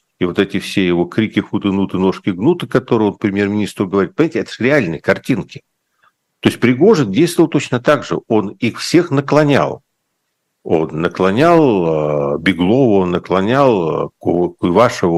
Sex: male